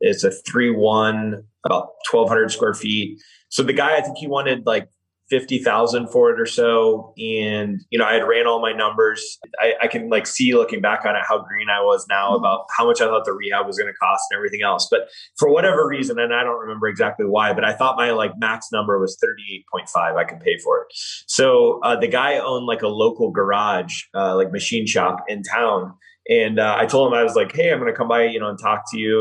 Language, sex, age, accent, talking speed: English, male, 20-39, American, 240 wpm